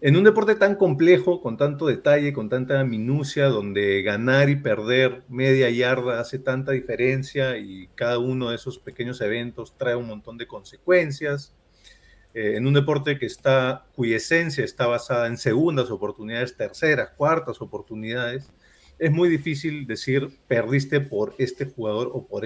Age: 40-59